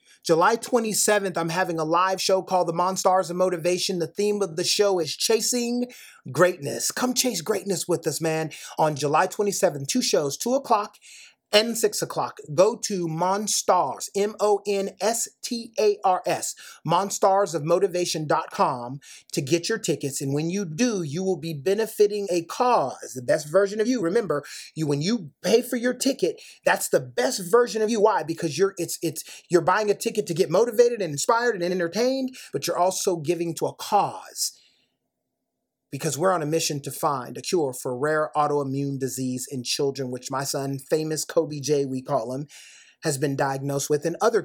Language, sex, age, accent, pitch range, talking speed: English, male, 30-49, American, 155-205 Hz, 175 wpm